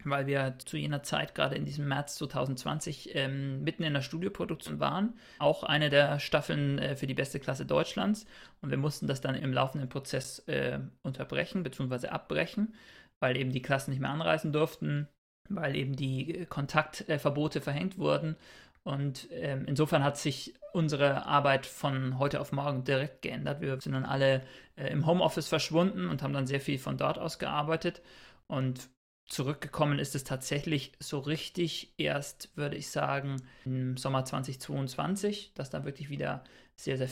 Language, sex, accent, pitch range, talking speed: German, male, German, 130-155 Hz, 165 wpm